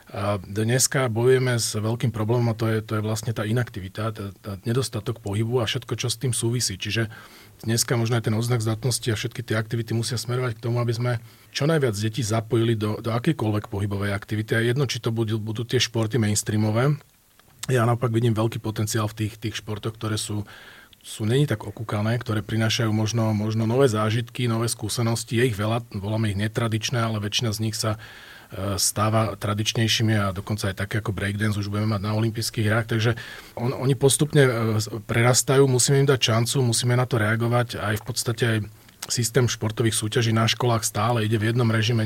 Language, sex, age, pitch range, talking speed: Slovak, male, 40-59, 110-120 Hz, 190 wpm